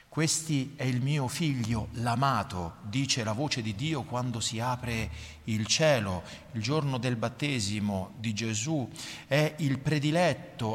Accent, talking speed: native, 140 wpm